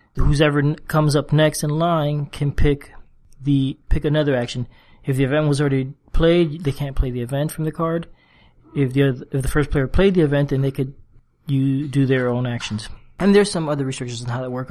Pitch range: 135-165 Hz